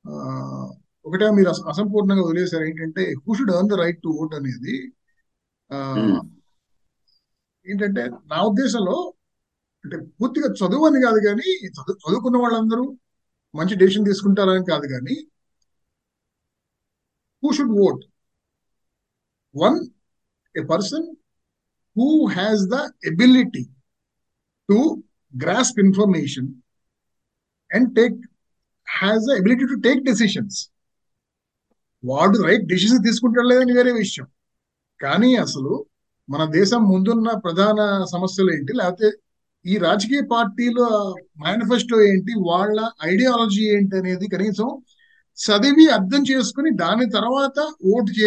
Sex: male